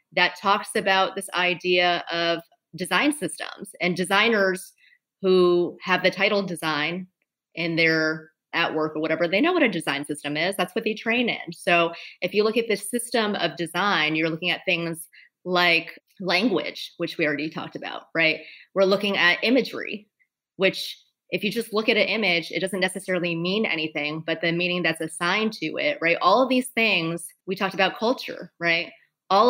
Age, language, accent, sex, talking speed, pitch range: 30-49, English, American, female, 180 wpm, 165-195 Hz